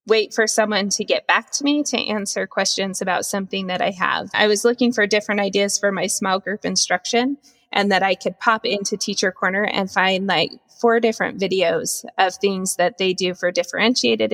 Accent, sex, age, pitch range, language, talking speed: American, female, 20-39, 190-220 Hz, English, 200 wpm